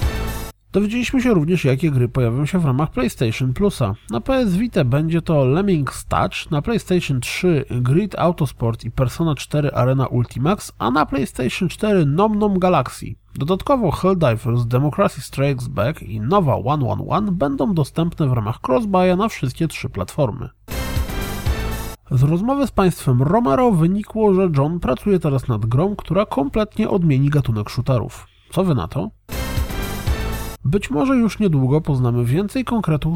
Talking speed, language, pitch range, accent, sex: 140 wpm, Polish, 120-180 Hz, native, male